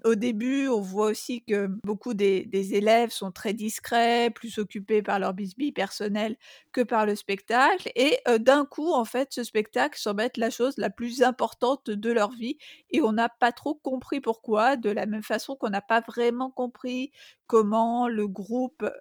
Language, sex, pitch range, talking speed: French, female, 210-255 Hz, 190 wpm